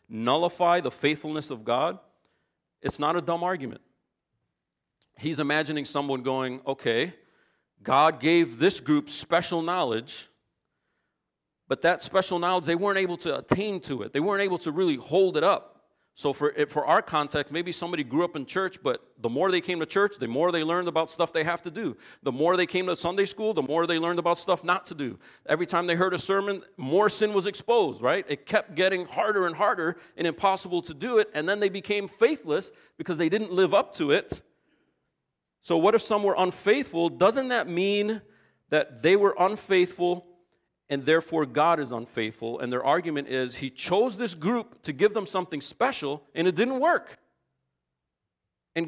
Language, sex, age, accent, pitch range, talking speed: English, male, 40-59, American, 145-190 Hz, 190 wpm